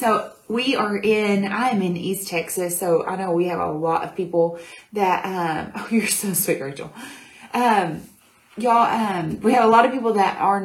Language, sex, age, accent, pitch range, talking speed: English, female, 30-49, American, 170-205 Hz, 195 wpm